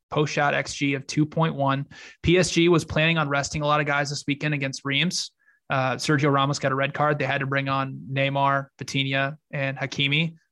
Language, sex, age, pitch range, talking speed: English, male, 20-39, 135-150 Hz, 195 wpm